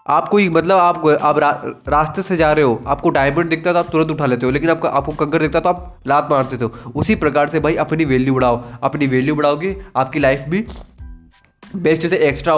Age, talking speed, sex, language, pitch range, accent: 20-39, 220 wpm, male, Hindi, 140-180 Hz, native